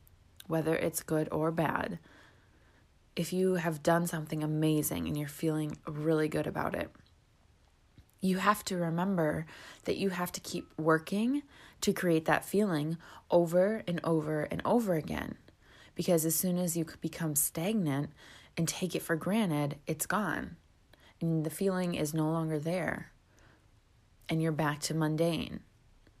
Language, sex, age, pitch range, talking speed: English, female, 20-39, 150-180 Hz, 145 wpm